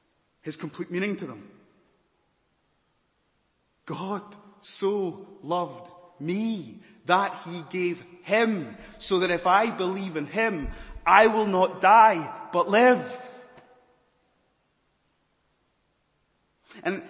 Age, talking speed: 30-49, 95 wpm